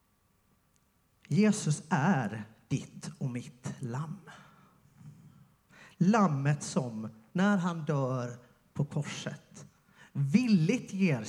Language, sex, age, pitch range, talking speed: Swedish, male, 30-49, 150-205 Hz, 80 wpm